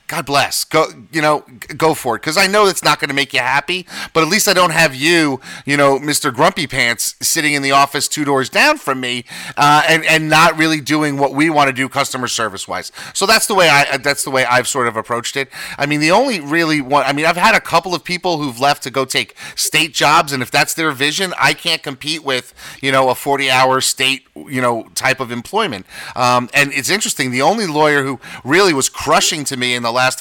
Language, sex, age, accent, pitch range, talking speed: English, male, 30-49, American, 130-160 Hz, 240 wpm